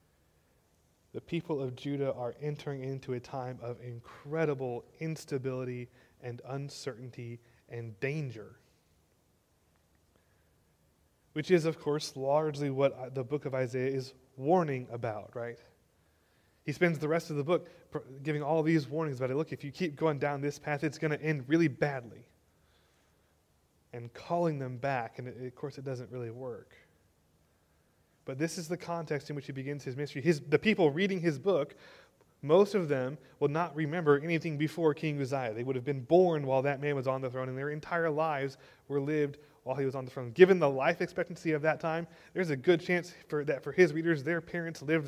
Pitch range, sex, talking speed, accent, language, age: 120-155 Hz, male, 180 wpm, American, English, 20-39